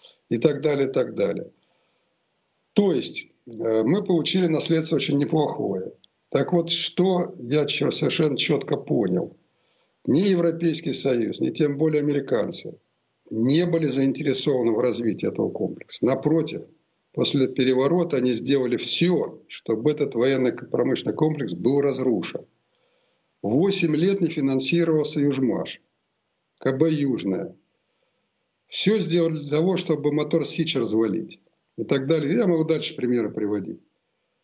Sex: male